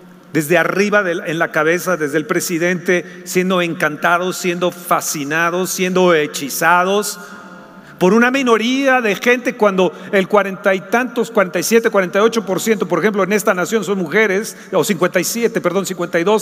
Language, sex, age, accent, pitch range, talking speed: Spanish, male, 40-59, Mexican, 175-220 Hz, 145 wpm